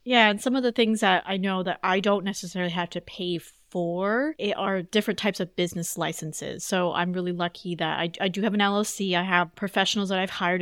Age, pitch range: 30-49, 175-220 Hz